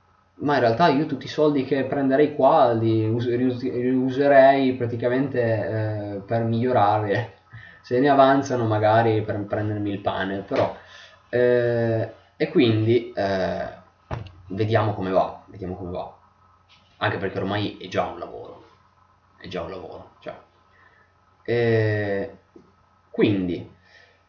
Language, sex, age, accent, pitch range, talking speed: Italian, male, 20-39, native, 95-120 Hz, 120 wpm